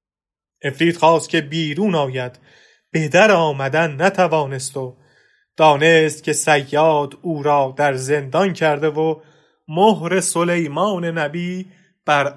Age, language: 30-49, English